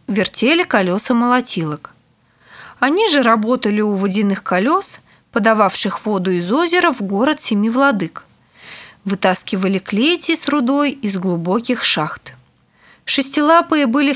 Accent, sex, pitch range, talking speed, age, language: native, female, 195-285 Hz, 110 wpm, 20-39, Russian